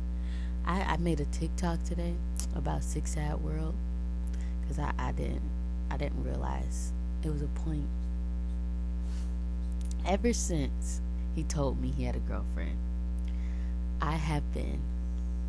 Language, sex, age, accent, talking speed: English, female, 20-39, American, 125 wpm